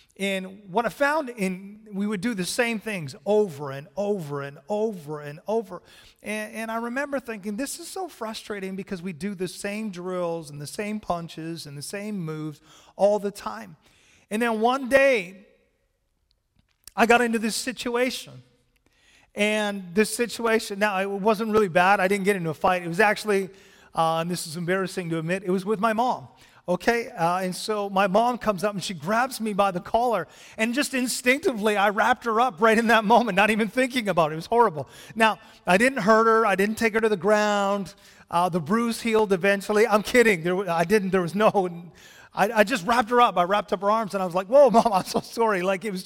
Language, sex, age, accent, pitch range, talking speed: English, male, 30-49, American, 185-230 Hz, 210 wpm